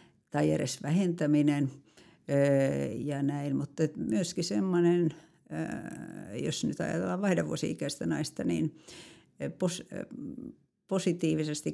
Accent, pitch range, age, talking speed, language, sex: native, 145-165 Hz, 60-79, 70 wpm, Finnish, female